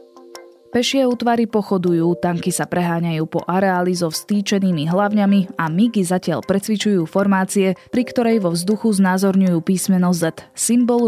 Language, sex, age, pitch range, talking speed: Slovak, female, 20-39, 170-205 Hz, 130 wpm